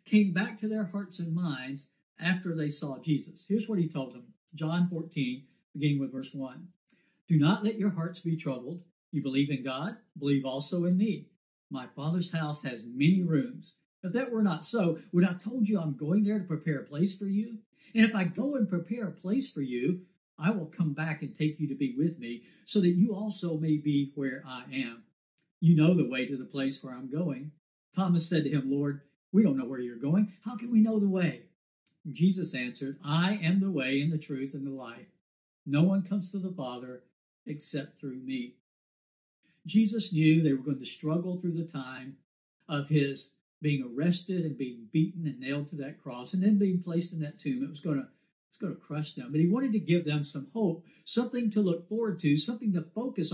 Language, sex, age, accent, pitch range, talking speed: English, male, 60-79, American, 140-190 Hz, 215 wpm